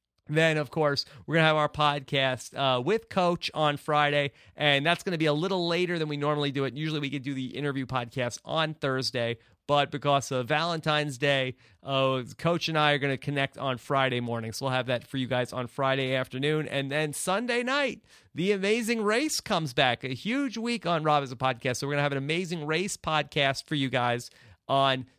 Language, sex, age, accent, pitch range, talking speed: English, male, 30-49, American, 135-170 Hz, 220 wpm